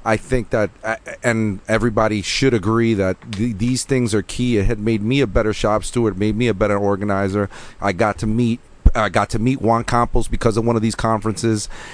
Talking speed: 205 wpm